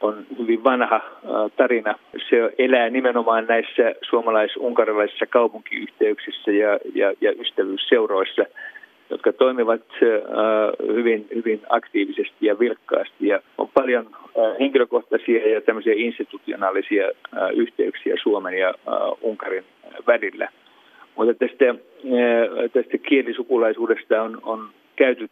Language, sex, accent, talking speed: Finnish, male, native, 90 wpm